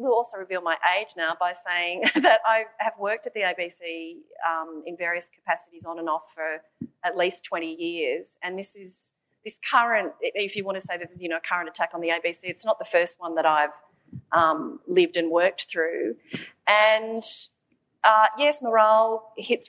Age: 30-49